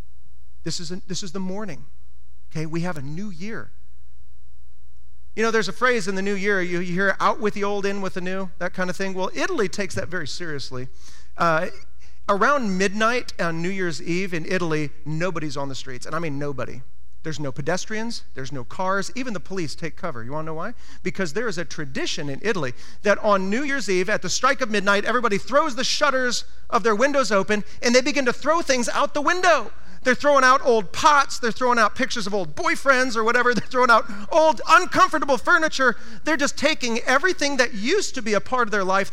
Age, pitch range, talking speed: 40-59, 165-240 Hz, 215 wpm